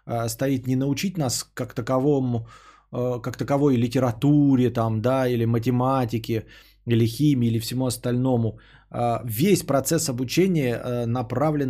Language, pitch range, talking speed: Bulgarian, 115-155 Hz, 115 wpm